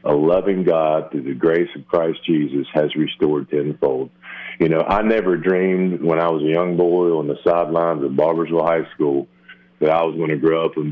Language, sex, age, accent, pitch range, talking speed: English, male, 40-59, American, 75-90 Hz, 210 wpm